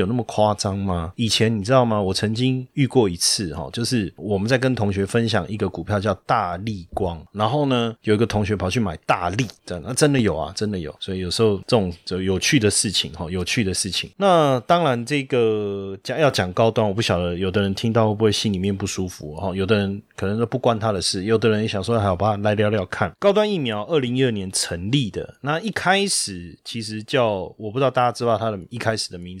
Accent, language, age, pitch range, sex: native, Chinese, 30-49, 100-130 Hz, male